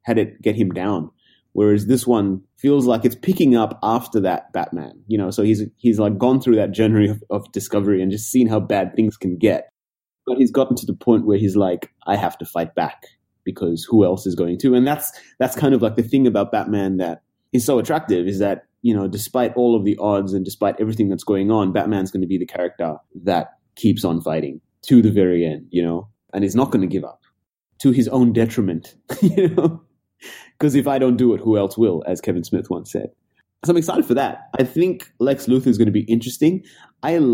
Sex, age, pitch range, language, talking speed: male, 20-39, 100-125 Hz, English, 230 wpm